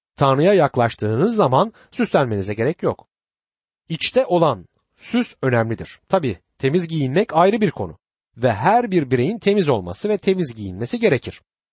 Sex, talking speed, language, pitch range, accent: male, 135 wpm, Turkish, 120-195 Hz, native